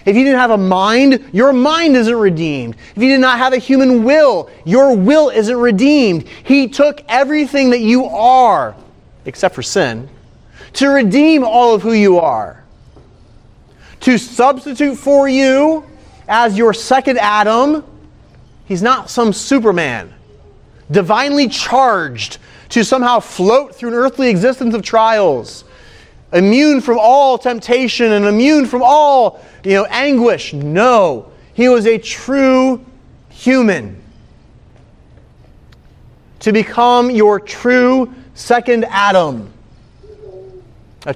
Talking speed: 125 wpm